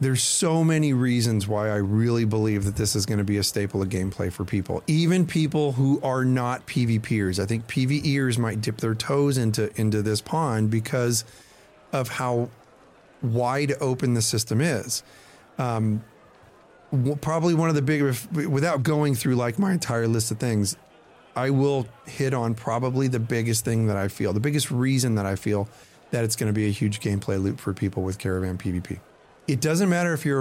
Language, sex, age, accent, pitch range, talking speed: English, male, 30-49, American, 105-135 Hz, 190 wpm